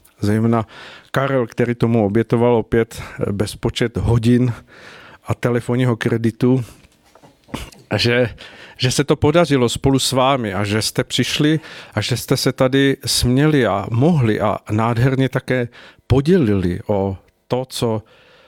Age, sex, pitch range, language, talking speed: 50-69, male, 105-125 Hz, Czech, 125 wpm